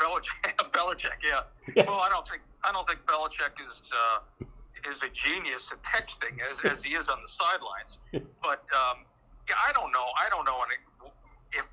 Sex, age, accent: male, 50-69, American